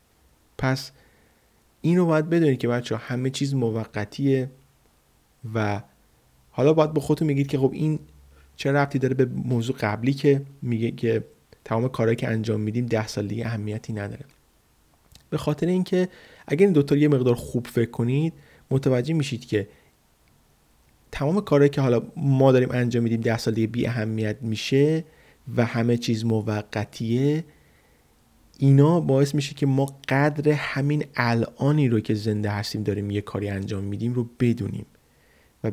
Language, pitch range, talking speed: Persian, 110-140 Hz, 150 wpm